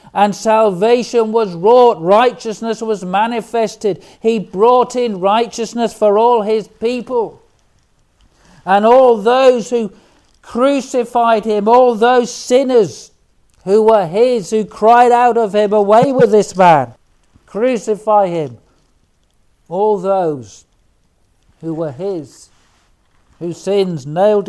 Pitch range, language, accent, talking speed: 150-215 Hz, English, British, 115 wpm